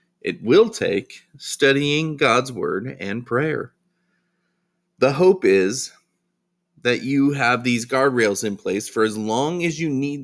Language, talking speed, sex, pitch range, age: English, 140 wpm, male, 115-160 Hz, 30-49